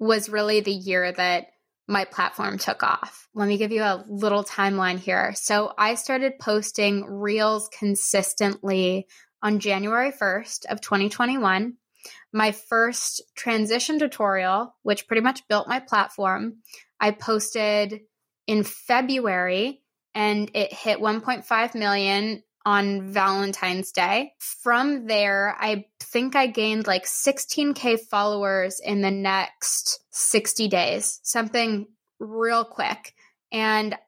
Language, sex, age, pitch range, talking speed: English, female, 20-39, 200-235 Hz, 120 wpm